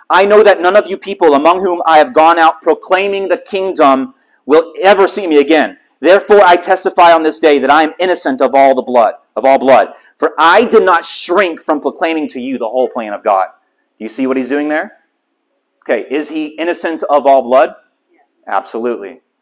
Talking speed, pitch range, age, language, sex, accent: 205 wpm, 145-210 Hz, 40-59, English, male, American